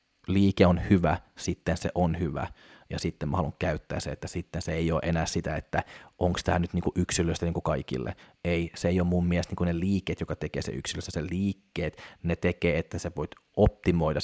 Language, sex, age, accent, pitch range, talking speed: Finnish, male, 30-49, native, 85-95 Hz, 210 wpm